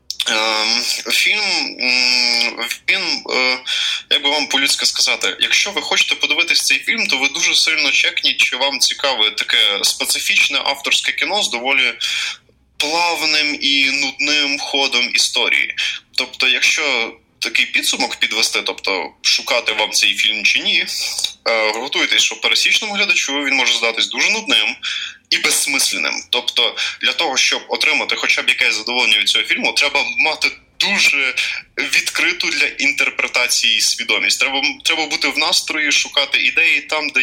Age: 20-39